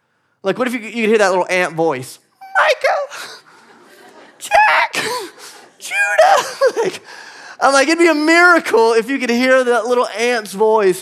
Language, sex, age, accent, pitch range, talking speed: English, male, 30-49, American, 195-285 Hz, 145 wpm